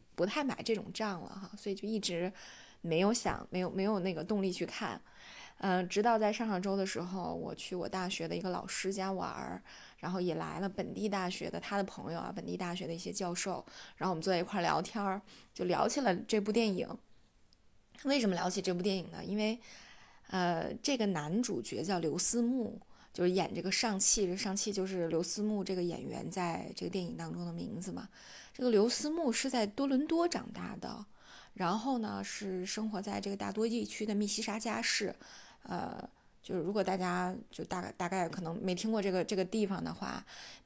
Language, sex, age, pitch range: Chinese, female, 20-39, 180-215 Hz